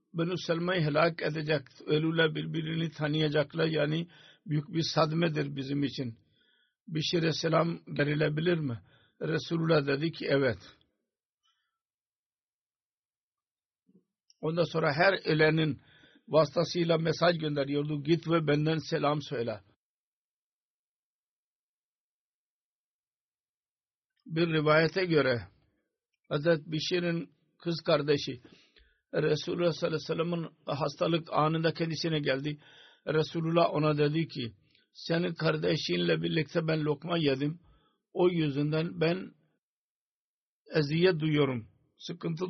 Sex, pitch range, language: male, 150-170 Hz, Turkish